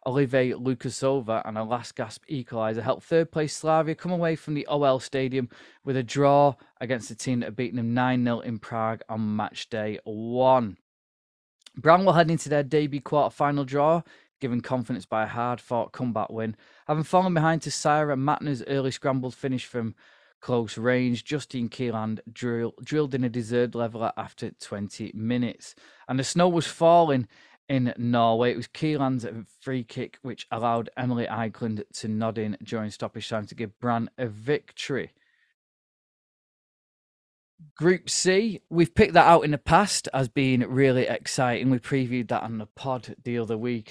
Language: English